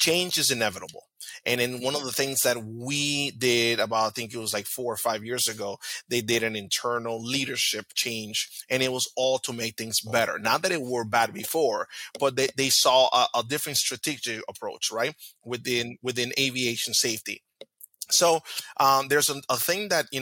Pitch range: 110-130 Hz